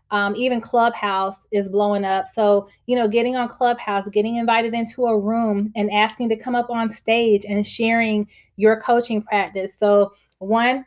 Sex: female